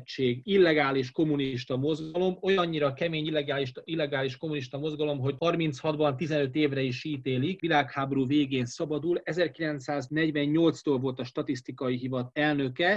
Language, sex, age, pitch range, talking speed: Hungarian, male, 30-49, 135-165 Hz, 105 wpm